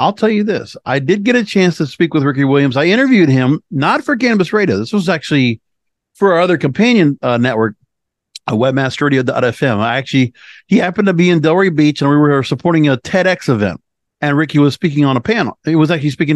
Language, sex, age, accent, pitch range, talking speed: English, male, 50-69, American, 140-185 Hz, 215 wpm